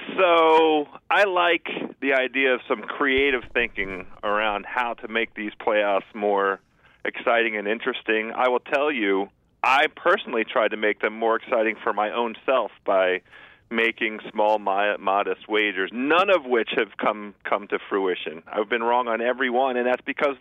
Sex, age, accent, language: male, 40-59, American, English